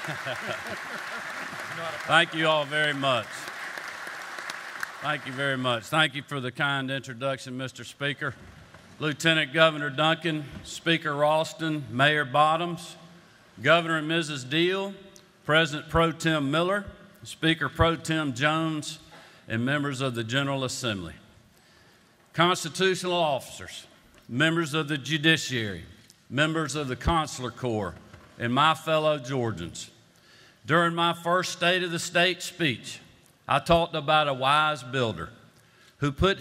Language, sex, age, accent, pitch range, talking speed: English, male, 50-69, American, 130-165 Hz, 120 wpm